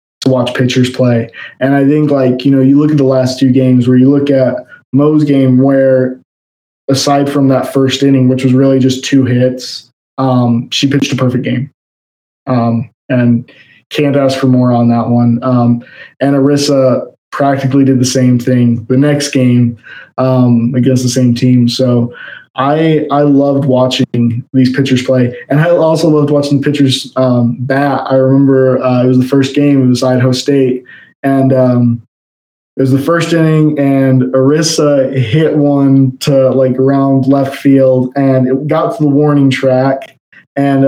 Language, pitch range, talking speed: English, 125-140 Hz, 175 wpm